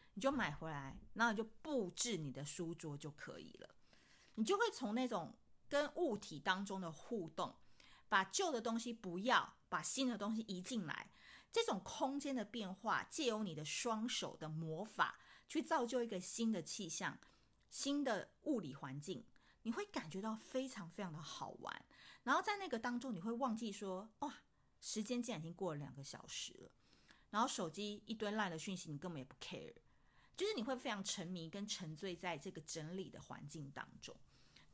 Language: Chinese